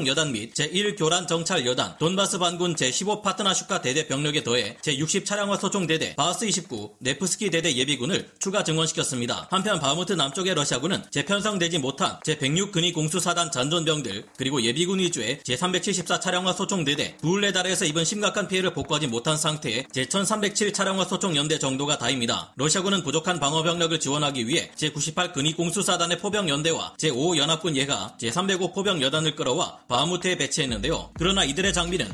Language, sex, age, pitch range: Korean, male, 40-59, 145-190 Hz